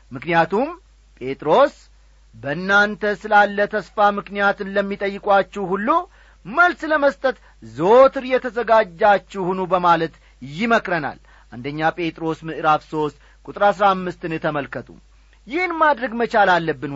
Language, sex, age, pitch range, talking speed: Amharic, male, 40-59, 170-240 Hz, 100 wpm